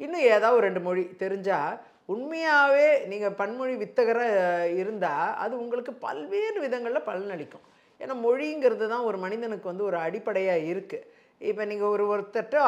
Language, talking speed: Tamil, 135 wpm